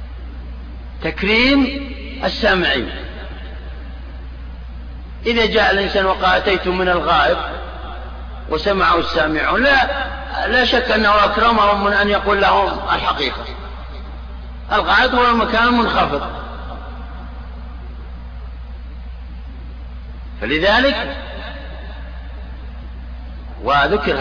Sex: male